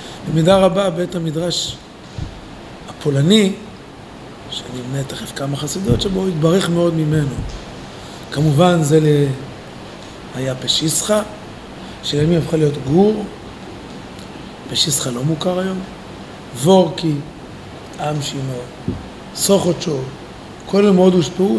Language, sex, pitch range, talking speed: Hebrew, male, 140-185 Hz, 105 wpm